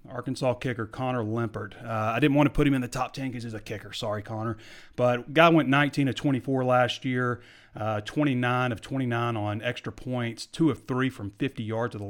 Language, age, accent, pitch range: English, 30-49, American, 105-125 Hz